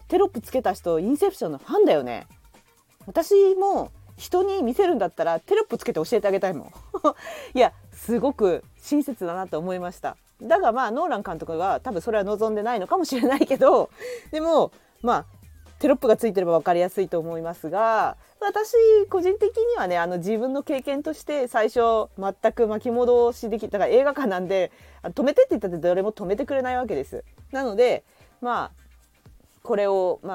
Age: 40-59